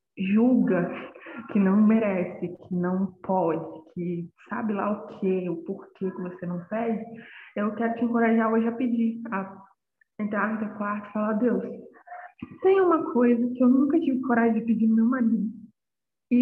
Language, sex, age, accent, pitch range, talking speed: Portuguese, female, 20-39, Brazilian, 195-240 Hz, 170 wpm